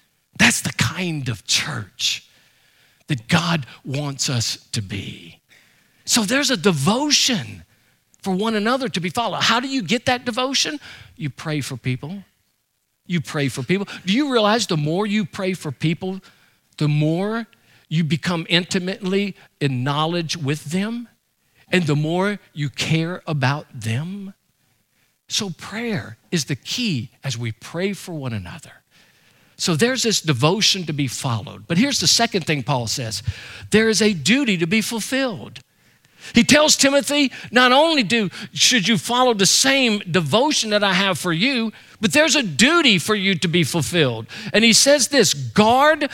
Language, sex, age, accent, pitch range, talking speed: English, male, 50-69, American, 160-235 Hz, 160 wpm